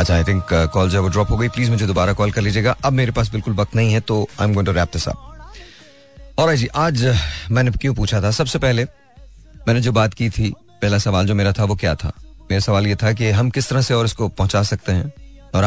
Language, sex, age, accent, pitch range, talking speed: Hindi, male, 30-49, native, 95-115 Hz, 245 wpm